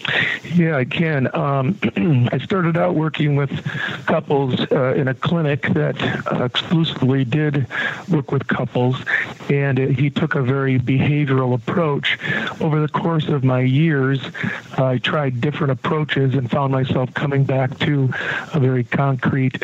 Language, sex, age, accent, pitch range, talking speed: English, male, 50-69, American, 130-155 Hz, 145 wpm